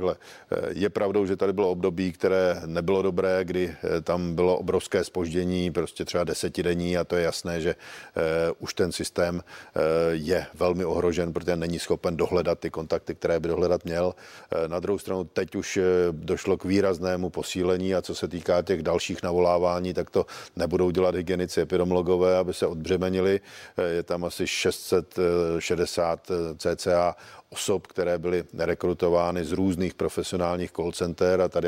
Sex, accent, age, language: male, native, 50-69, Czech